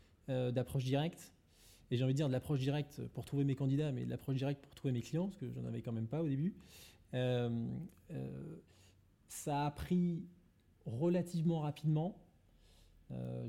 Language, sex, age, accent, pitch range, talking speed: French, male, 20-39, French, 115-150 Hz, 180 wpm